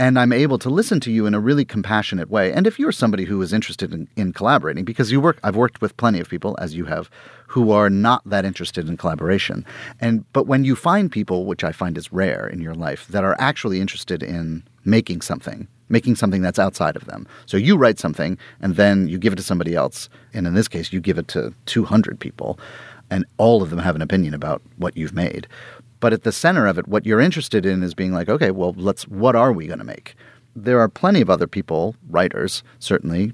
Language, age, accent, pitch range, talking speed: English, 30-49, American, 95-120 Hz, 235 wpm